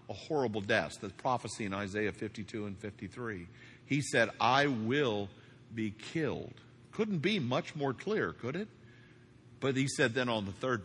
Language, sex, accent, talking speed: English, male, American, 165 wpm